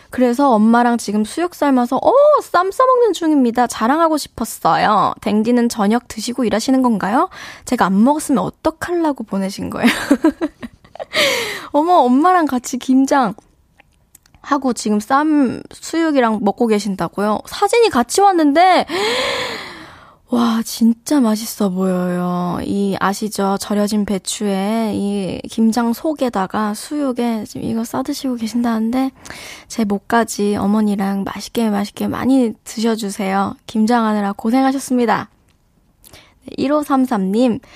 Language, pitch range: Korean, 215-295 Hz